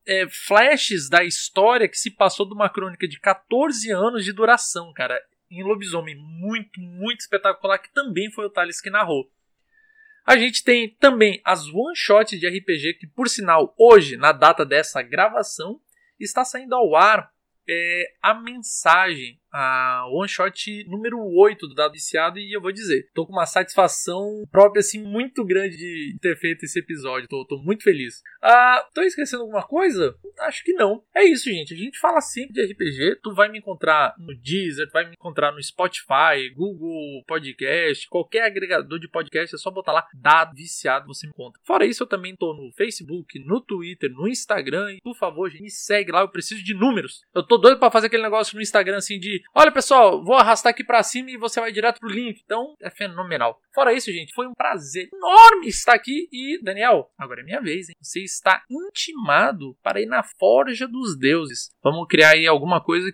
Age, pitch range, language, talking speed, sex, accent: 20-39, 170-235 Hz, Portuguese, 190 wpm, male, Brazilian